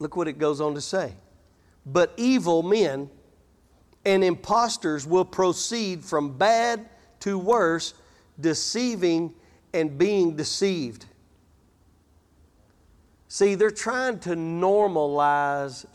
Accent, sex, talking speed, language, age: American, male, 100 wpm, English, 40-59